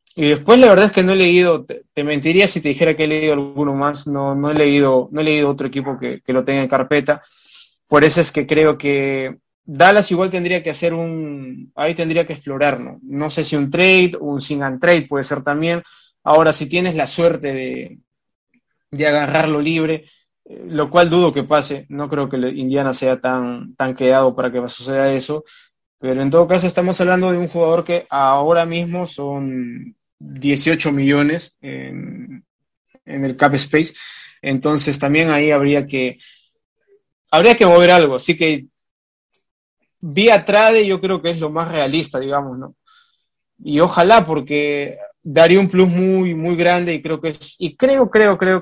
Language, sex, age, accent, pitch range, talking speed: Spanish, male, 20-39, Argentinian, 140-175 Hz, 185 wpm